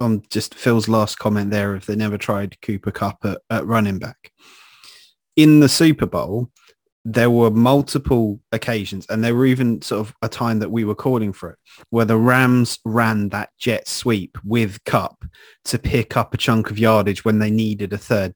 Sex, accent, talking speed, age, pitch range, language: male, British, 195 wpm, 30-49, 105-130 Hz, English